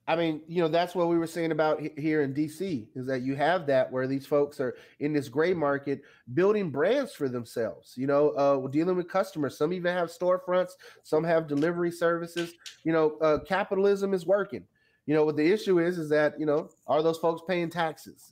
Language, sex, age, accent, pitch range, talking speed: English, male, 30-49, American, 135-170 Hz, 215 wpm